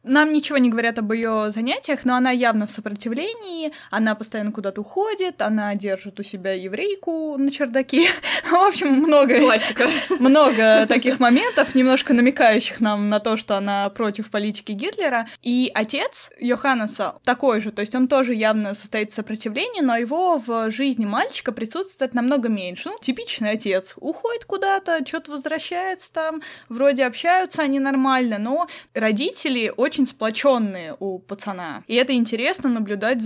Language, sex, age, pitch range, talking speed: Russian, female, 20-39, 210-275 Hz, 150 wpm